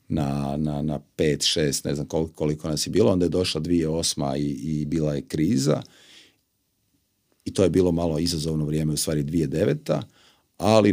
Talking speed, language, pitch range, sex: 175 wpm, Croatian, 75-90 Hz, male